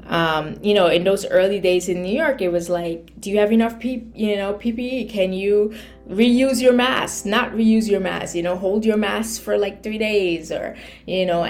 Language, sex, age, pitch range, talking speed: English, female, 20-39, 175-200 Hz, 220 wpm